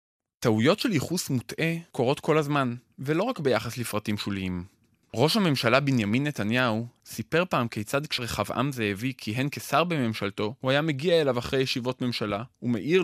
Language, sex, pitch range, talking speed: Hebrew, male, 110-140 Hz, 145 wpm